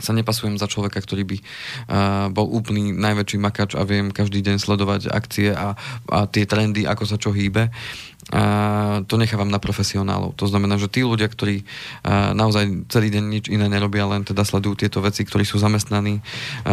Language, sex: Slovak, male